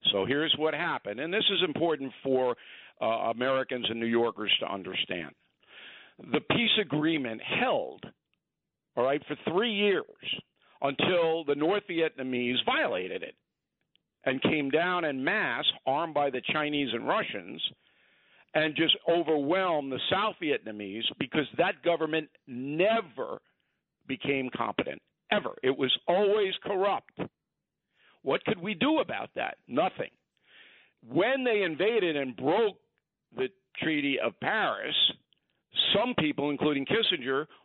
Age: 50-69